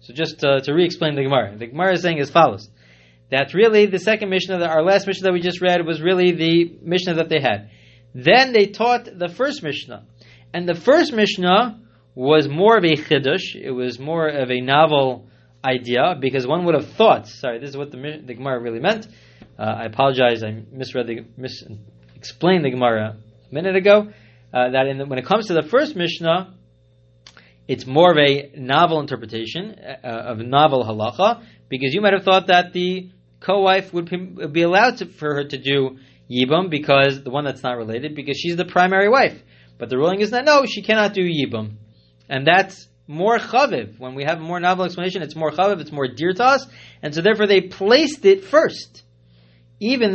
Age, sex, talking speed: 30-49, male, 195 wpm